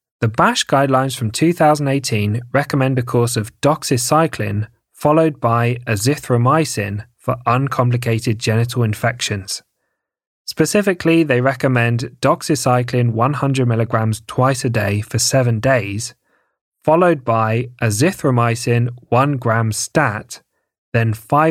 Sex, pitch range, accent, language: male, 115-145 Hz, British, English